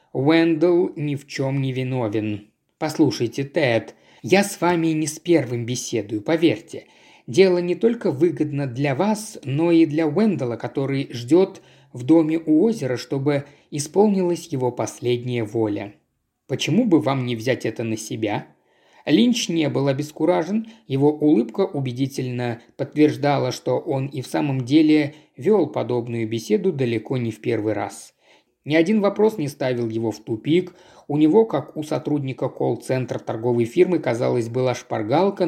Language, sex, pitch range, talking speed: Russian, male, 125-180 Hz, 145 wpm